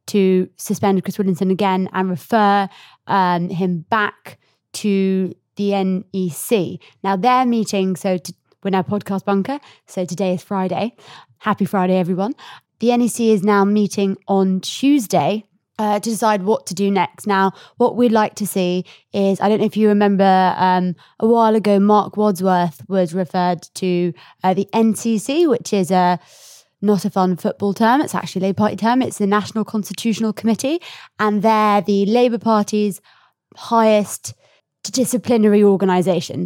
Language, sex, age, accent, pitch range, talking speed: English, female, 20-39, British, 185-220 Hz, 155 wpm